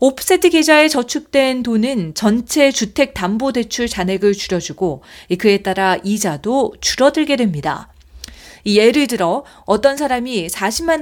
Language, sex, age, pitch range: Korean, female, 40-59, 195-270 Hz